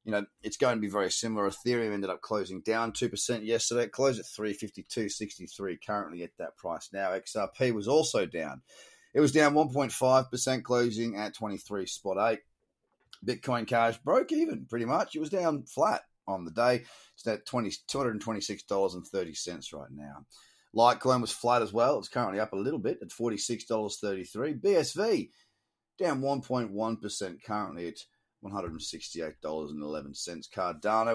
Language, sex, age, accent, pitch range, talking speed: English, male, 30-49, Australian, 100-125 Hz, 190 wpm